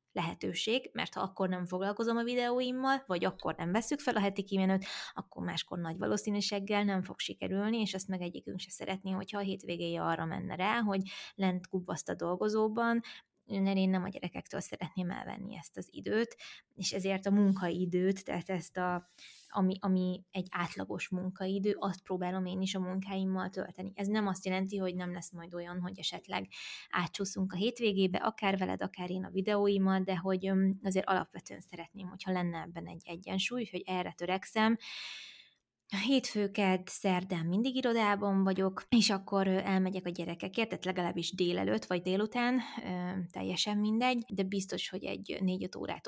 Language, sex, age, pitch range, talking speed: Hungarian, female, 20-39, 180-200 Hz, 160 wpm